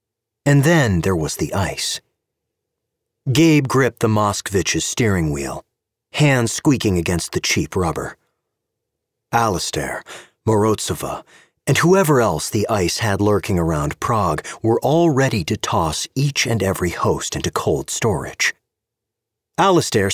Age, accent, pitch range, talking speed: 40-59, American, 105-140 Hz, 125 wpm